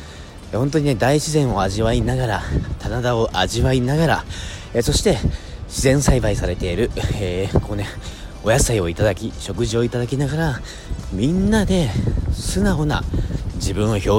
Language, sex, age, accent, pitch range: Japanese, male, 40-59, native, 95-145 Hz